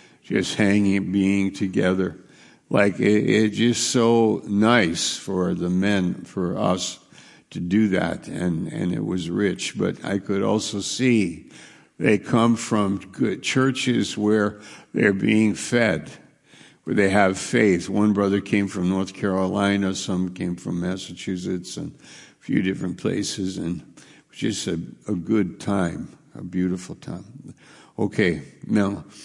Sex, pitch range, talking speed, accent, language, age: male, 95-110 Hz, 140 wpm, American, English, 60-79